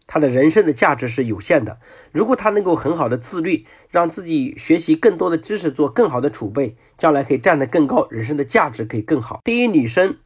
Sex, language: male, Chinese